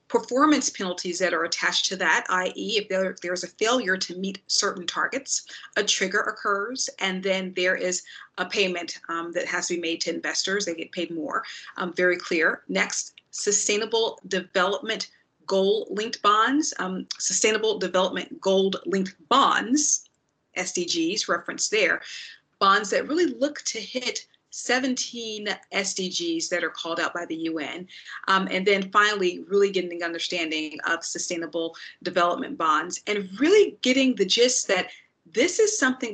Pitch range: 180-220 Hz